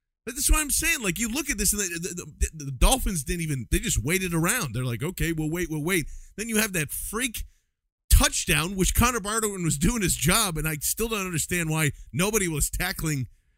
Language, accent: English, American